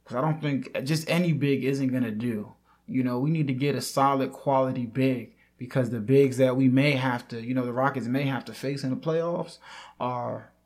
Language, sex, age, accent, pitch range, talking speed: English, male, 20-39, American, 125-145 Hz, 230 wpm